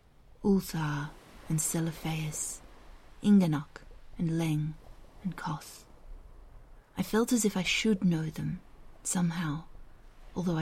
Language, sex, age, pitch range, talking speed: English, female, 30-49, 160-190 Hz, 100 wpm